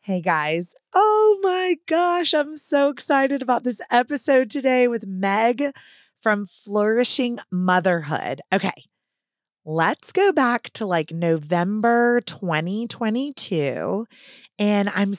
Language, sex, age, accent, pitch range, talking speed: English, female, 30-49, American, 165-230 Hz, 105 wpm